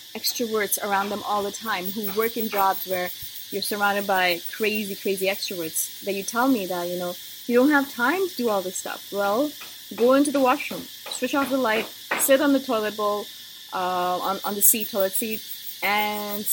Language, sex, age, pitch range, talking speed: English, female, 20-39, 200-250 Hz, 200 wpm